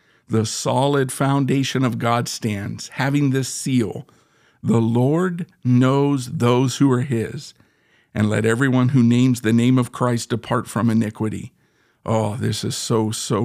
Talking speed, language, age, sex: 145 wpm, English, 50-69, male